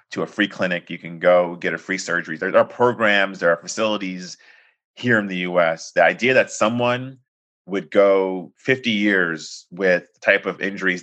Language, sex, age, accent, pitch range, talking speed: English, male, 30-49, American, 85-100 Hz, 195 wpm